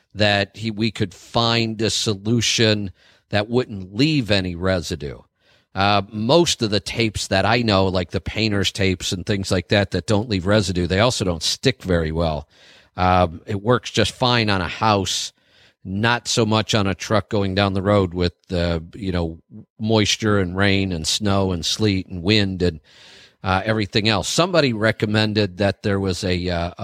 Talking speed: 180 wpm